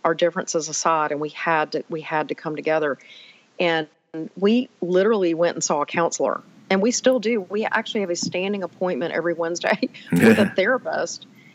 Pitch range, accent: 165-205 Hz, American